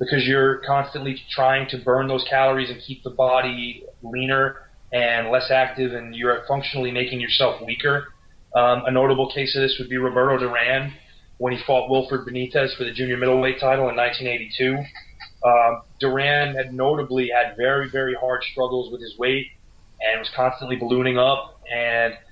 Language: English